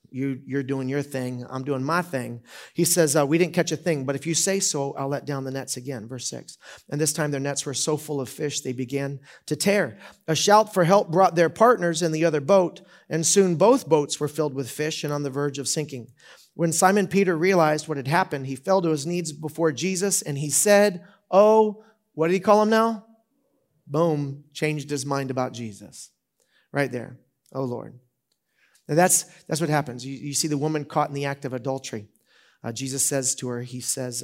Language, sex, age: English, male, 40-59